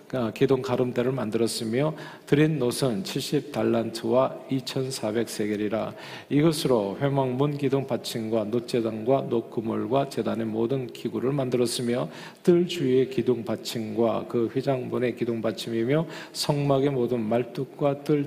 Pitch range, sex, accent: 110-140 Hz, male, native